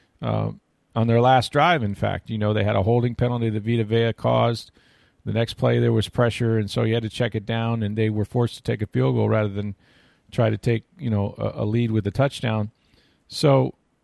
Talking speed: 235 wpm